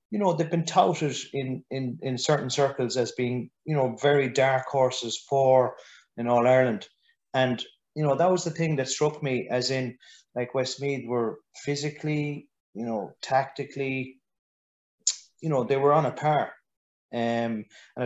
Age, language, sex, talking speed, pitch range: 30-49, English, male, 155 wpm, 120-140 Hz